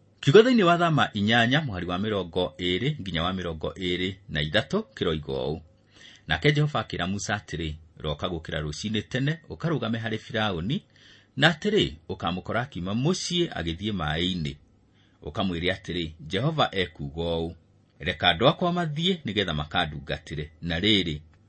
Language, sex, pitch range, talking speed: English, male, 95-140 Hz, 125 wpm